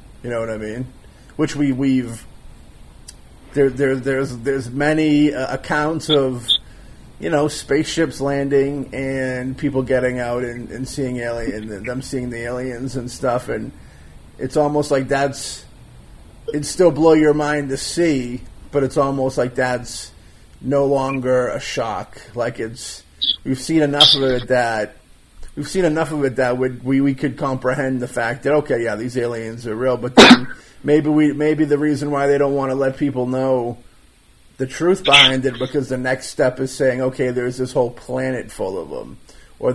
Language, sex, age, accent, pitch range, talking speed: English, male, 30-49, American, 120-145 Hz, 175 wpm